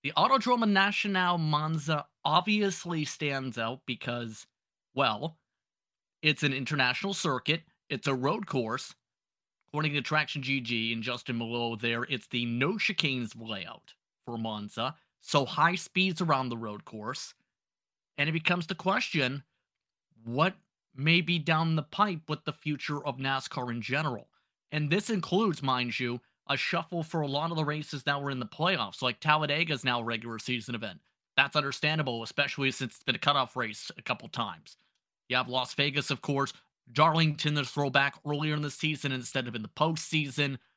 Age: 30-49